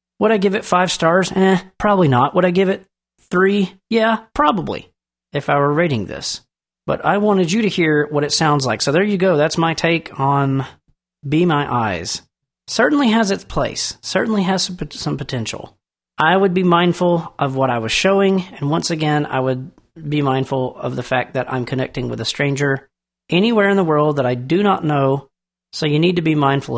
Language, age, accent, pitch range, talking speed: English, 40-59, American, 130-170 Hz, 200 wpm